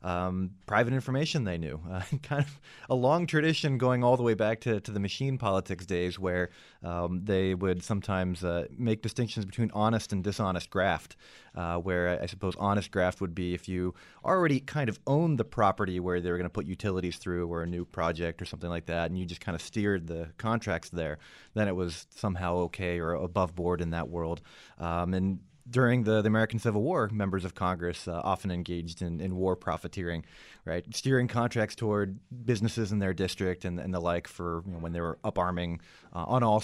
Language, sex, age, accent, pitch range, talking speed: English, male, 30-49, American, 90-115 Hz, 210 wpm